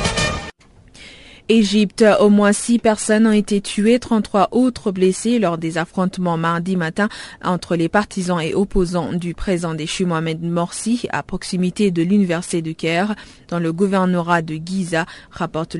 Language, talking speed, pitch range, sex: French, 145 wpm, 165-200 Hz, female